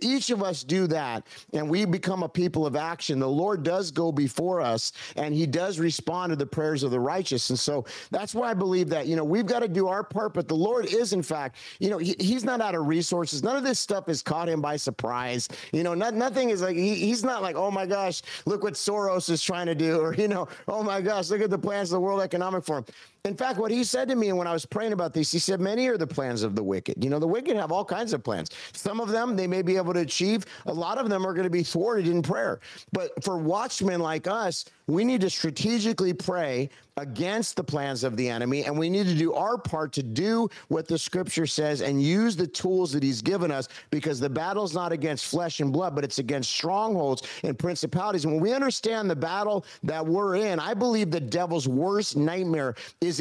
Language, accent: English, American